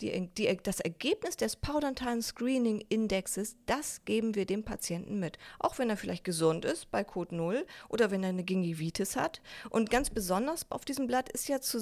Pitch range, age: 190-255 Hz, 30-49